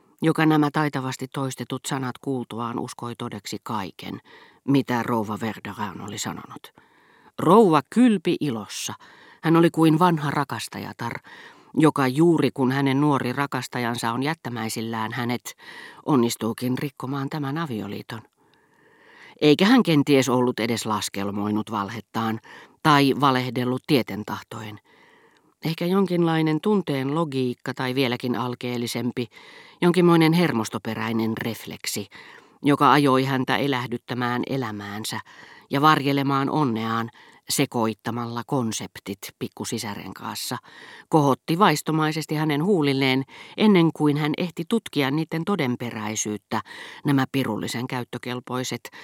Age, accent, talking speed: 40-59, native, 100 wpm